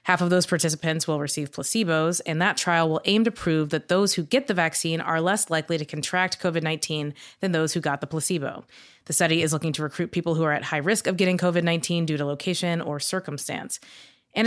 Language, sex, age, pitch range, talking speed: English, female, 20-39, 155-185 Hz, 220 wpm